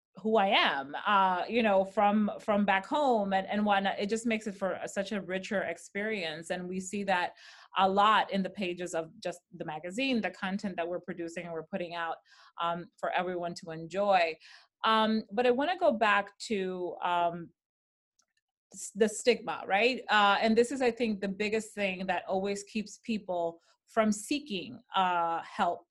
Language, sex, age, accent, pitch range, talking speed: English, female, 30-49, American, 185-225 Hz, 185 wpm